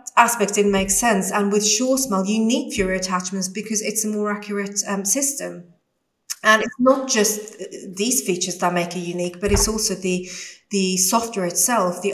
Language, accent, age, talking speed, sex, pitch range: English, British, 30-49, 185 wpm, female, 180-215 Hz